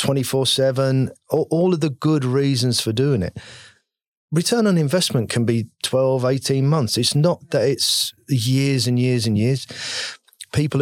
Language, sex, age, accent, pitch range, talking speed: English, male, 40-59, British, 100-130 Hz, 150 wpm